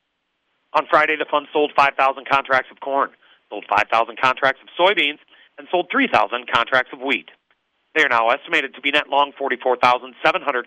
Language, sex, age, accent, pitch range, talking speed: English, male, 40-59, American, 130-160 Hz, 165 wpm